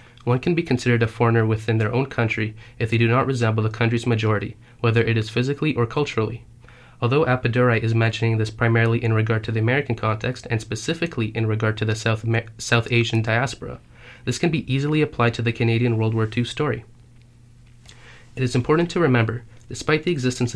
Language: English